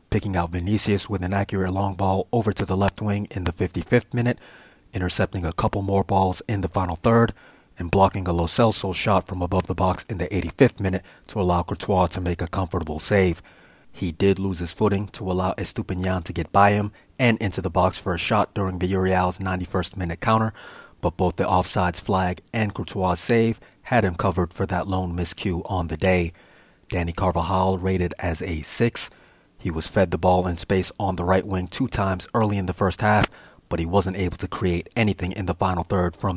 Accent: American